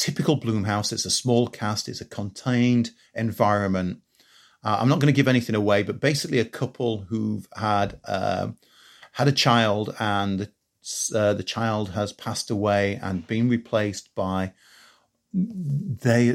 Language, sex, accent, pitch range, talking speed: English, male, British, 100-120 Hz, 150 wpm